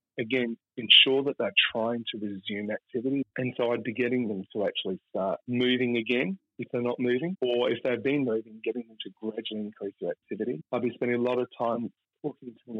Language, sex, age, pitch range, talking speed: English, male, 40-59, 110-130 Hz, 210 wpm